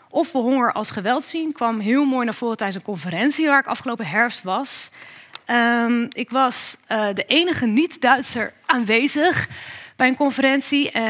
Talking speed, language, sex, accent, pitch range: 155 wpm, Dutch, female, Dutch, 210-265 Hz